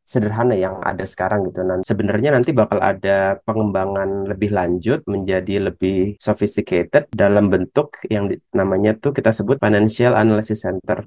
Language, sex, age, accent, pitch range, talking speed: Indonesian, male, 30-49, native, 100-115 Hz, 140 wpm